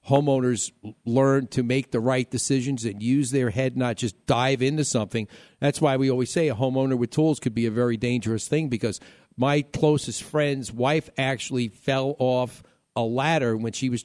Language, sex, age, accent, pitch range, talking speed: English, male, 50-69, American, 125-160 Hz, 190 wpm